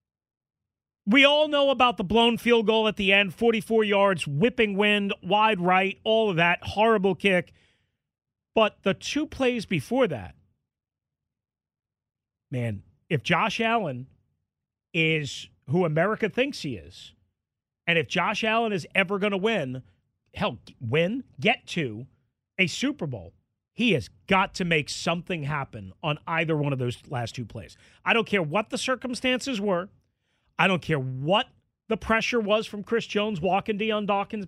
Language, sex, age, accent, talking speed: English, male, 40-59, American, 155 wpm